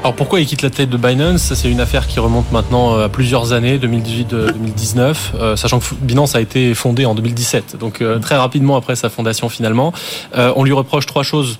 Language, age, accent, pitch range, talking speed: French, 20-39, French, 115-135 Hz, 195 wpm